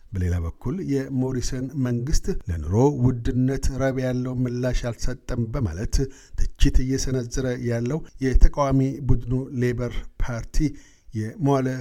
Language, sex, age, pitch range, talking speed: Amharic, male, 60-79, 115-130 Hz, 95 wpm